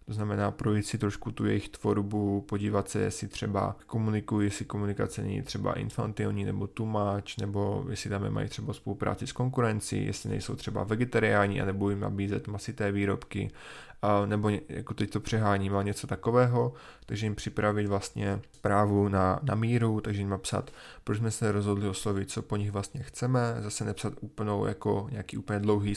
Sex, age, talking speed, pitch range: male, 20-39, 175 wpm, 100-115 Hz